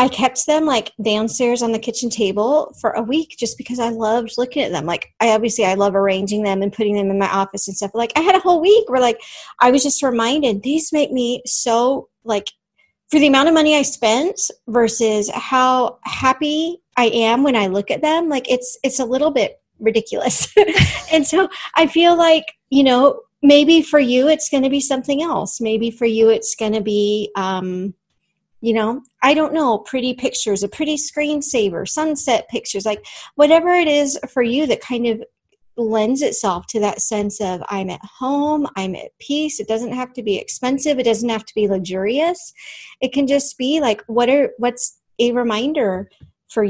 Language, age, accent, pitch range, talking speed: English, 30-49, American, 220-290 Hz, 200 wpm